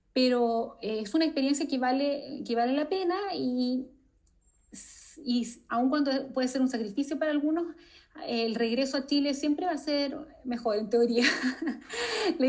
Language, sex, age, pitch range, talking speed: Spanish, female, 30-49, 240-290 Hz, 155 wpm